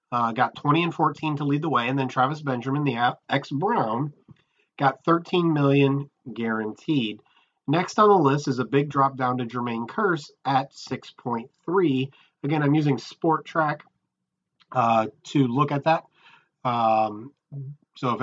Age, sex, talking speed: 30-49, male, 155 wpm